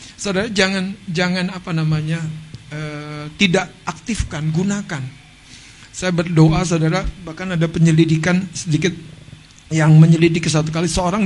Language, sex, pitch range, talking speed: Indonesian, male, 160-195 Hz, 110 wpm